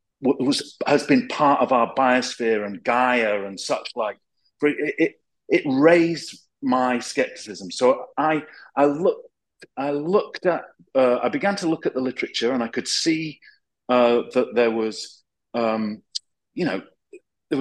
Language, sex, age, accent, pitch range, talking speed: English, male, 40-59, British, 120-175 Hz, 155 wpm